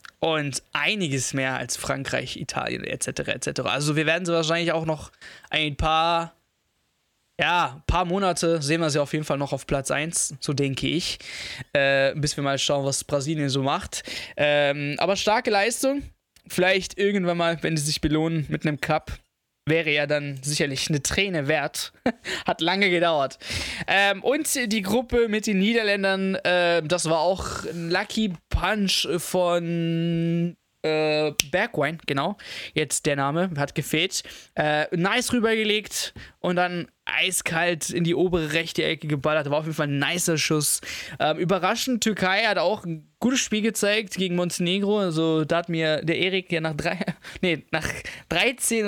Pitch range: 155-195 Hz